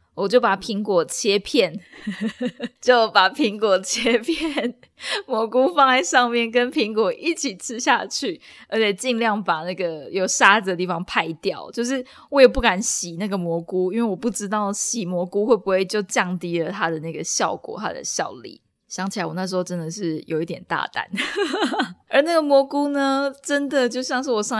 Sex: female